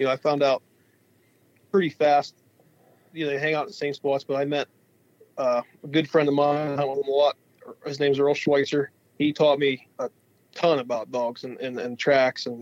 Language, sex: English, male